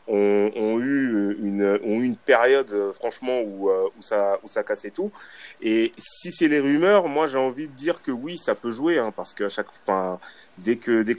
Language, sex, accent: French, male, French